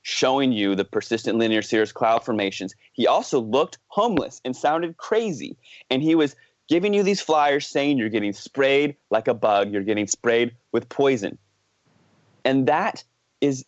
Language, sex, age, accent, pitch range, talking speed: English, male, 30-49, American, 120-150 Hz, 160 wpm